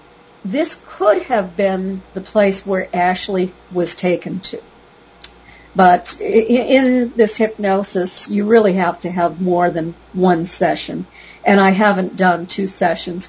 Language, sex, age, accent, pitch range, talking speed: English, female, 50-69, American, 175-215 Hz, 135 wpm